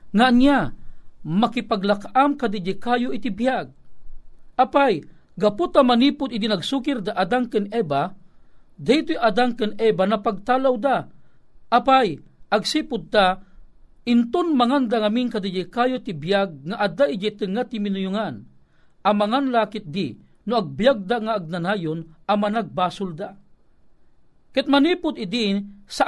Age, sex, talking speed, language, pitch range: 50-69, male, 120 wpm, Filipino, 200-255 Hz